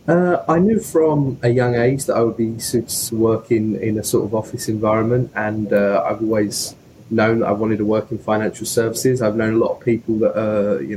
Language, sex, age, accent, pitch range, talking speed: English, male, 20-39, British, 105-120 Hz, 225 wpm